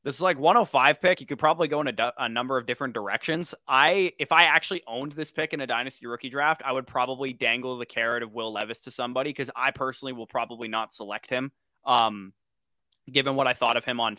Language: English